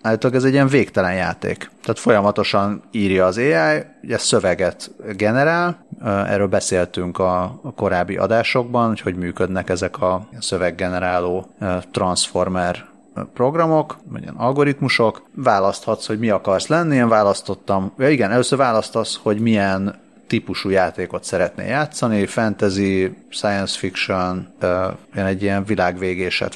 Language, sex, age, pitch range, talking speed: Hungarian, male, 30-49, 95-120 Hz, 120 wpm